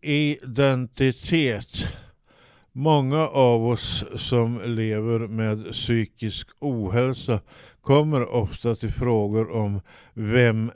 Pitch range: 105-120 Hz